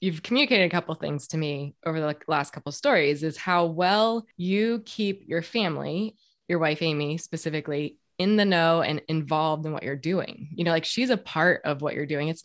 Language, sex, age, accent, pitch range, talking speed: English, female, 20-39, American, 155-190 Hz, 215 wpm